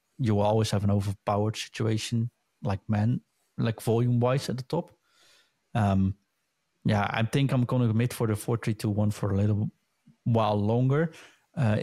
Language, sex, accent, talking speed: English, male, Dutch, 170 wpm